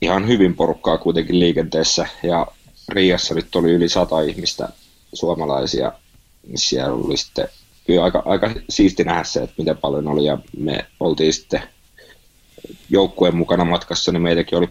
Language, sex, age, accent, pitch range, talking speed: Finnish, male, 30-49, native, 80-90 Hz, 150 wpm